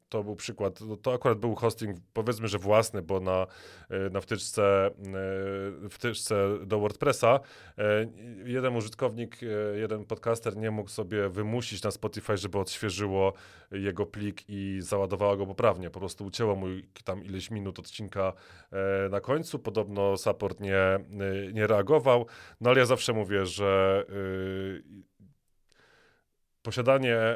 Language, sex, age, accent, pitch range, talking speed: Polish, male, 30-49, native, 100-115 Hz, 125 wpm